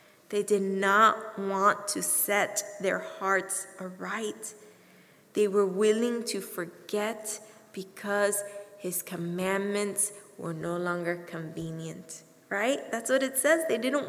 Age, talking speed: 20-39, 120 wpm